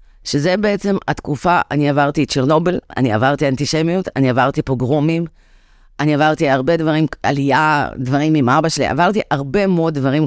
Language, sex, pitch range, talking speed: Hebrew, female, 125-155 Hz, 150 wpm